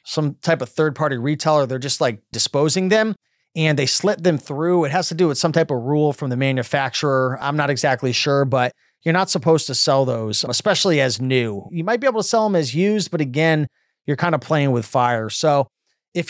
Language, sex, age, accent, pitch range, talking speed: English, male, 30-49, American, 140-185 Hz, 220 wpm